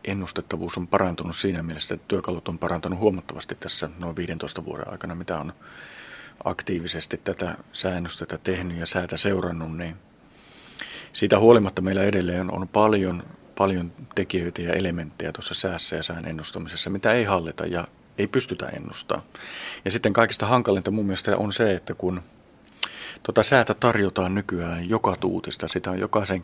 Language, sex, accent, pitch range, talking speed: Finnish, male, native, 85-100 Hz, 150 wpm